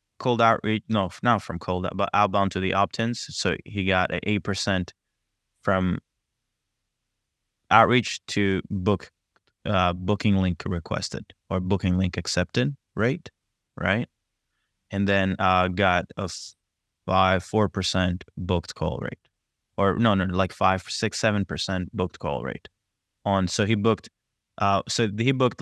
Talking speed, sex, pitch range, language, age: 145 wpm, male, 95-110 Hz, English, 20-39